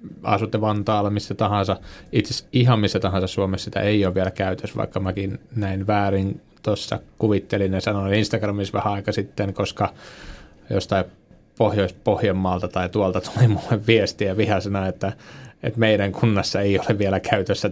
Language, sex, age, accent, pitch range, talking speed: Finnish, male, 20-39, native, 95-105 Hz, 145 wpm